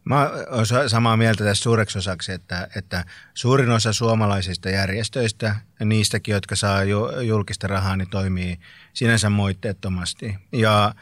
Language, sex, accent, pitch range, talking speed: Finnish, male, native, 95-110 Hz, 125 wpm